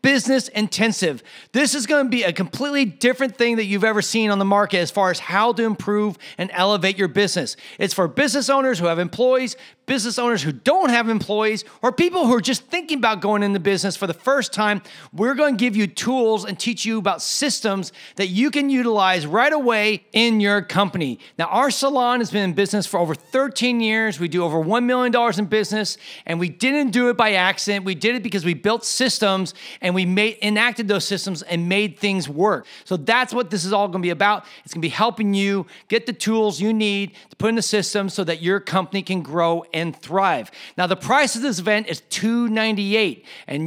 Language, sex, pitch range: English, male, 190-240 Hz